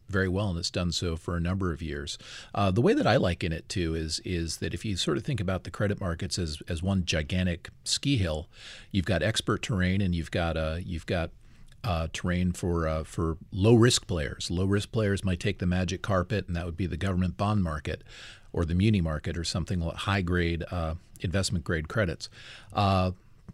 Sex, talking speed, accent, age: male, 220 wpm, American, 40-59